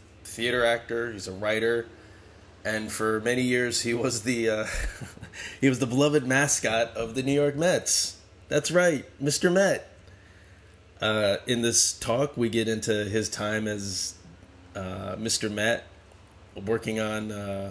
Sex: male